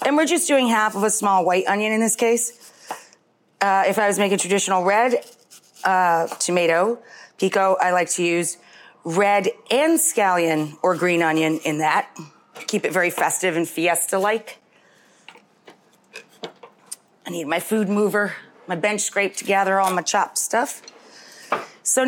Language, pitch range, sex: English, 190-230 Hz, female